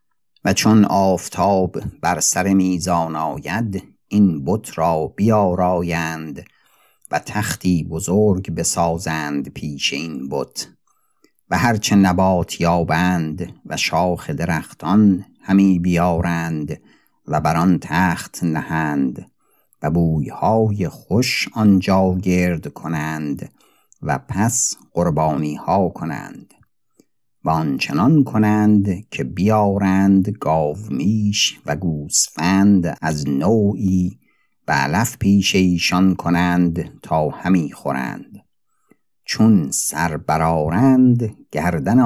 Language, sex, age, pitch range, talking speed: Persian, male, 50-69, 85-100 Hz, 90 wpm